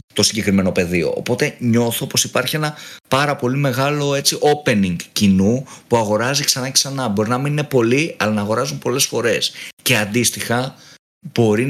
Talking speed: 155 wpm